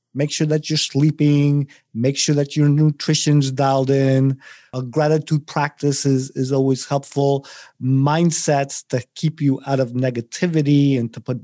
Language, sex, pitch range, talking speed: English, male, 125-155 Hz, 150 wpm